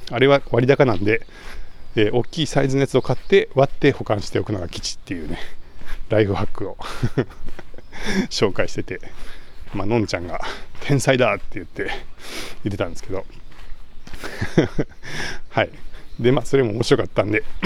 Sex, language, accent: male, Japanese, native